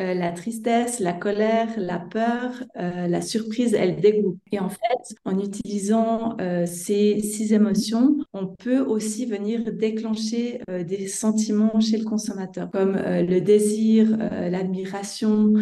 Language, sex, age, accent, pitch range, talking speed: French, female, 30-49, French, 185-220 Hz, 140 wpm